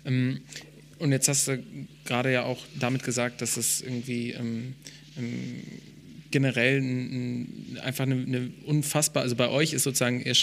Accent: German